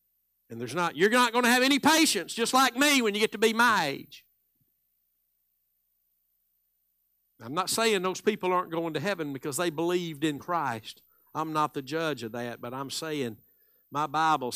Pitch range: 115-160 Hz